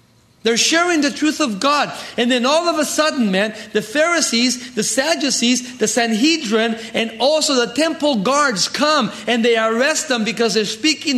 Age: 40-59